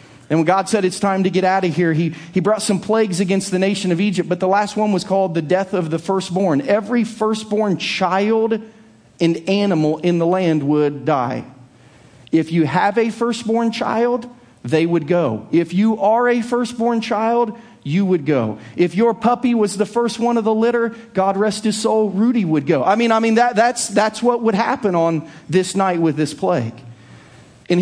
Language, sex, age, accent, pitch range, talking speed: English, male, 40-59, American, 185-235 Hz, 205 wpm